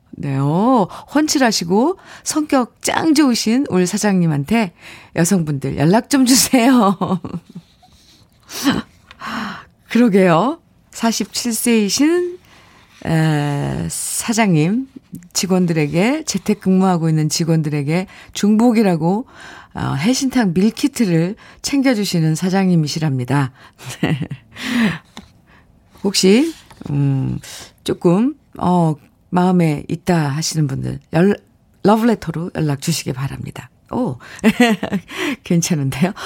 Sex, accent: female, native